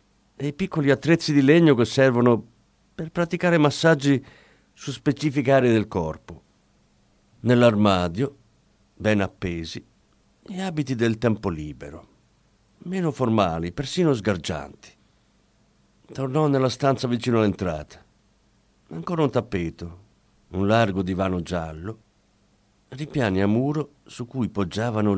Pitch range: 95-140 Hz